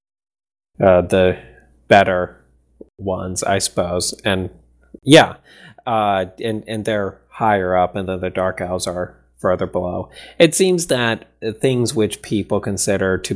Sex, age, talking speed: male, 30-49, 135 wpm